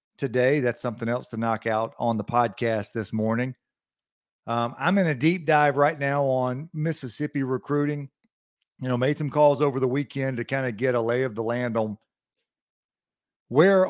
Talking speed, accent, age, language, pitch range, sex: 180 wpm, American, 50-69, English, 115-140 Hz, male